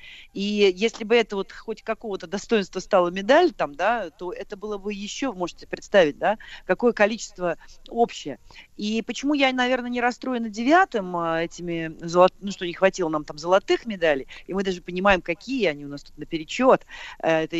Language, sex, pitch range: Russian, female, 170-225 Hz